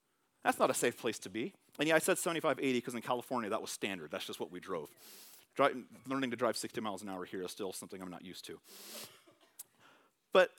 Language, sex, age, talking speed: English, male, 40-59, 225 wpm